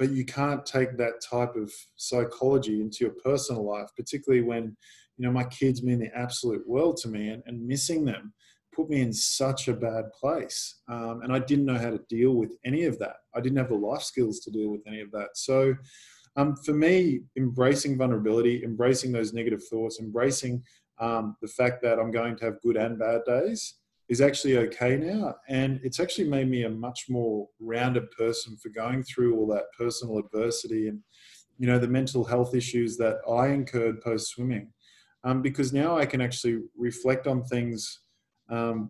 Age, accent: 20-39, Australian